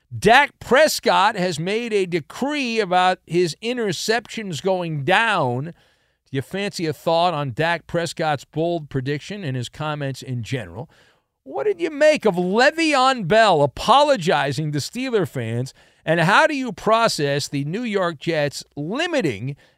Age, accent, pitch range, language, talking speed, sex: 40-59, American, 155-255 Hz, English, 145 wpm, male